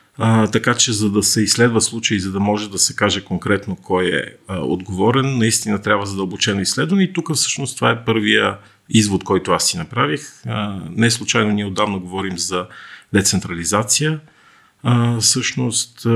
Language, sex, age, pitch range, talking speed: Bulgarian, male, 40-59, 100-120 Hz, 165 wpm